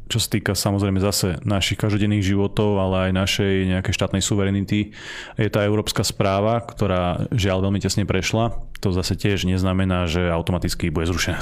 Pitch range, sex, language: 95-110 Hz, male, Slovak